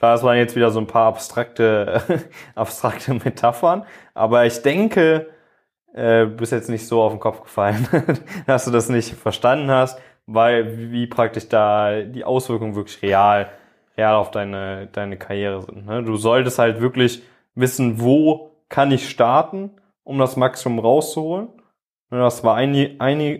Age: 20-39